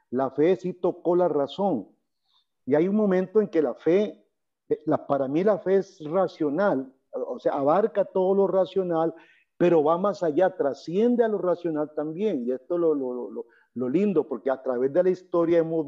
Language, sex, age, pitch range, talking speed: Spanish, male, 50-69, 140-185 Hz, 195 wpm